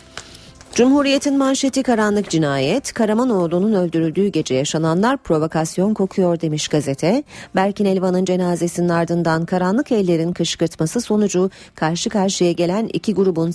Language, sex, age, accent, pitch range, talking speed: Turkish, female, 40-59, native, 160-190 Hz, 110 wpm